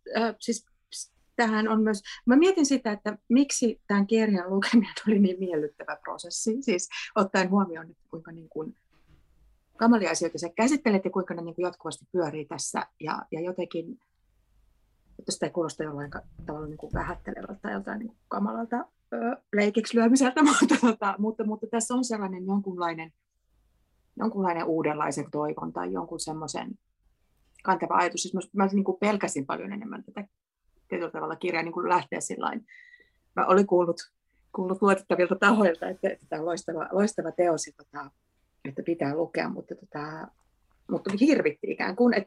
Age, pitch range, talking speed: 30-49, 165-220 Hz, 140 wpm